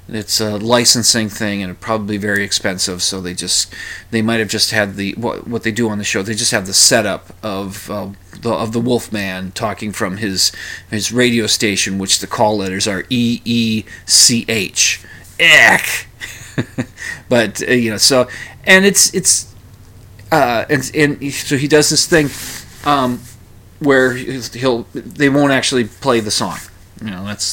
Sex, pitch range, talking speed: male, 100-130 Hz, 160 wpm